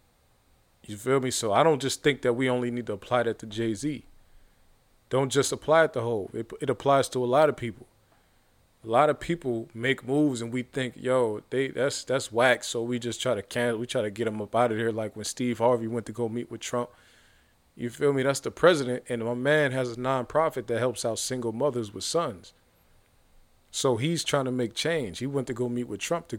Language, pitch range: English, 115-130 Hz